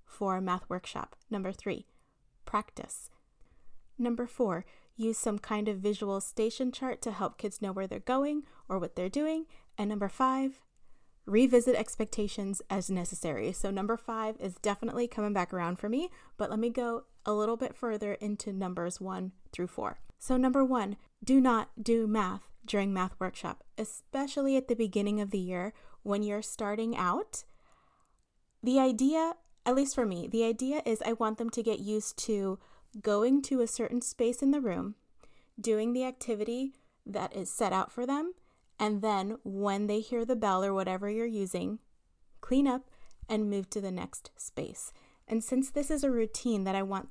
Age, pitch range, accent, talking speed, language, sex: 20-39, 200-250 Hz, American, 175 wpm, English, female